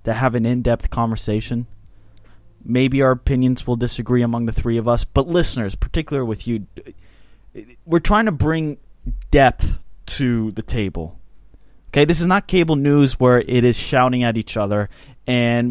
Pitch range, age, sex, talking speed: 110-140 Hz, 20-39, male, 160 wpm